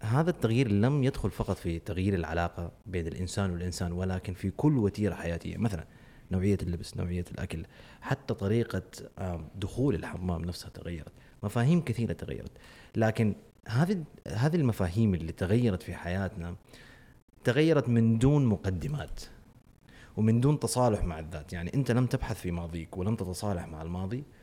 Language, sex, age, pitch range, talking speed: Arabic, male, 30-49, 90-125 Hz, 140 wpm